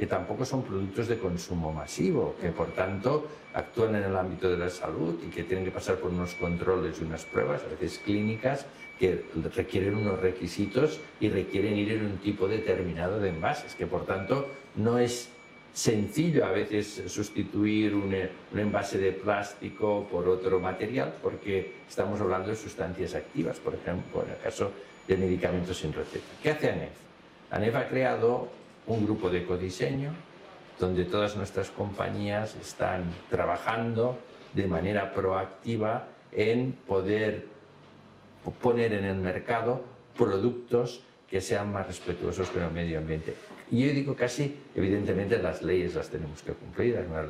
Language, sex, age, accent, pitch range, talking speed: Spanish, male, 60-79, Spanish, 90-115 Hz, 155 wpm